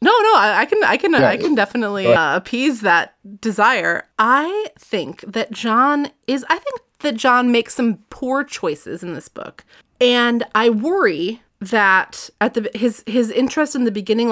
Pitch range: 190-255 Hz